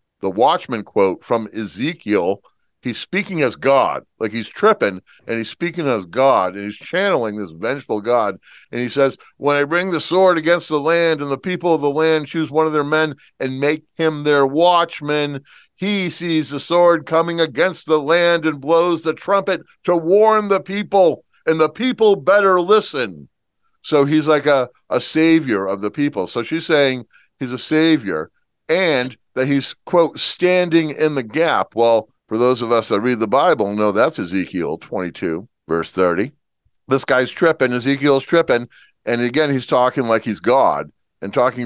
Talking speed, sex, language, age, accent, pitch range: 175 wpm, male, English, 50-69, American, 120-175 Hz